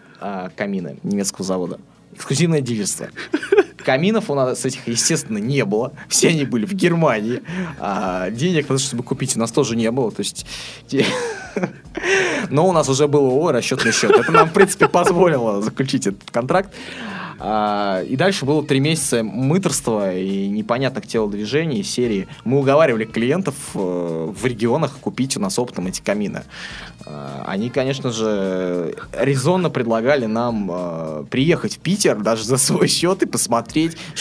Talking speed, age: 145 wpm, 20-39